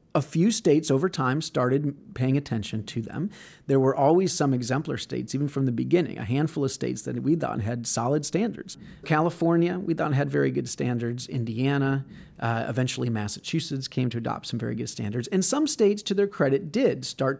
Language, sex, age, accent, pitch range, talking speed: English, male, 40-59, American, 125-165 Hz, 195 wpm